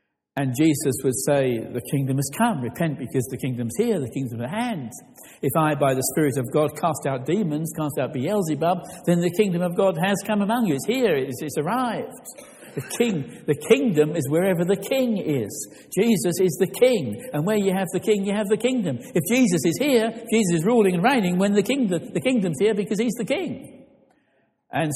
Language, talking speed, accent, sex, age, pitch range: English, 210 wpm, British, male, 60-79, 150-225 Hz